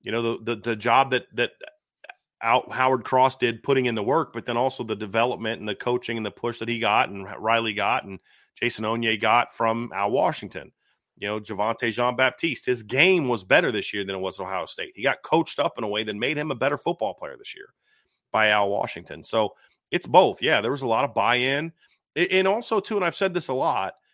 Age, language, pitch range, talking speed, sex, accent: 30-49, English, 115-140 Hz, 235 wpm, male, American